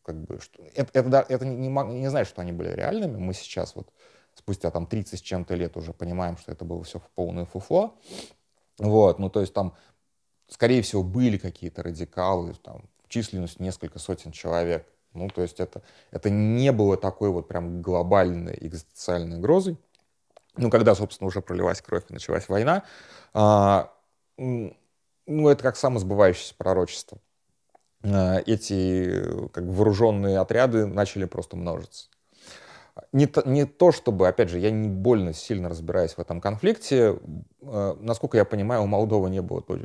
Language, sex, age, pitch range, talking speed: Russian, male, 30-49, 85-105 Hz, 155 wpm